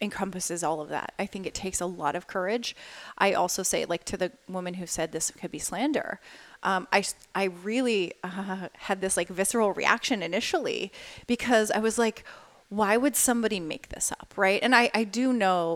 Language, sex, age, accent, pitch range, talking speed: English, female, 30-49, American, 185-225 Hz, 200 wpm